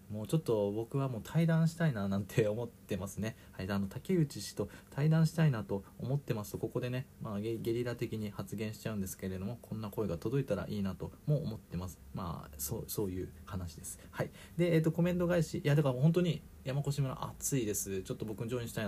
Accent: native